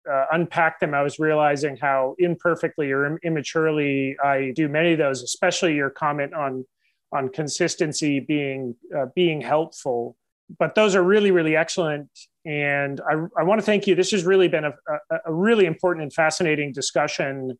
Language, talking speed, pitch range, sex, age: English, 175 wpm, 145-175 Hz, male, 30-49